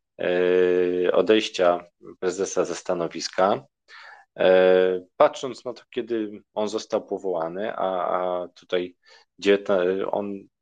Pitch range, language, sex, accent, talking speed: 90-105 Hz, Polish, male, native, 90 wpm